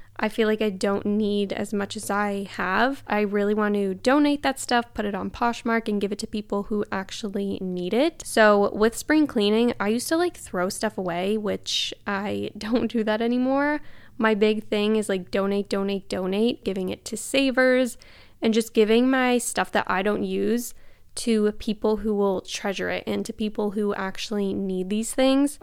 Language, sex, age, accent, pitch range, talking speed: English, female, 10-29, American, 200-235 Hz, 195 wpm